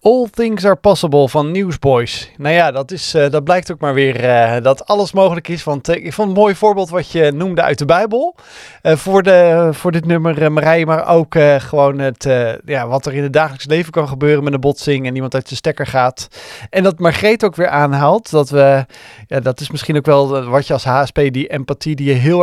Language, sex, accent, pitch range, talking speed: Dutch, male, Dutch, 130-160 Hz, 245 wpm